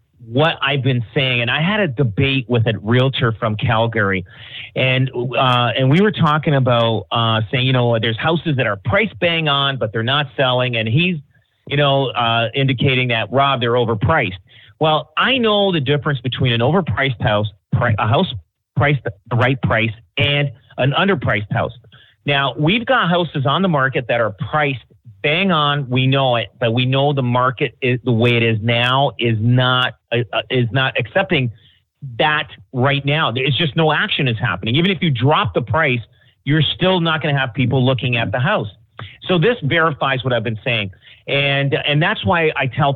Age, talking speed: 40-59, 190 wpm